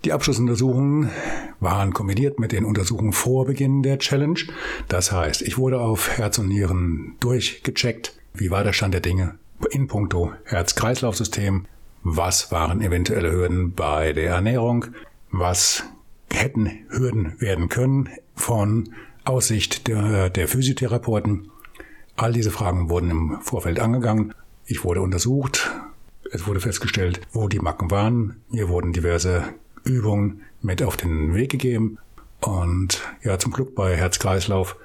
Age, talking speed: 60-79, 135 wpm